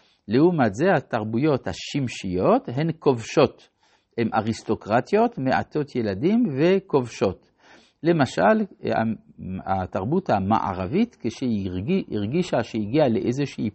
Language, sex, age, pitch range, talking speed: Hebrew, male, 50-69, 105-150 Hz, 80 wpm